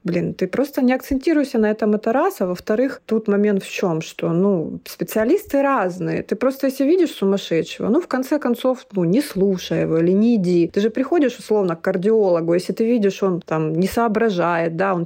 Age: 30-49